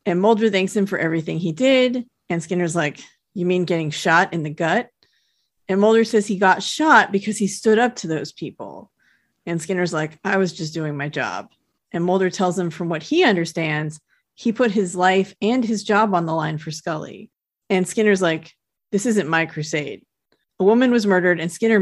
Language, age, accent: English, 30-49, American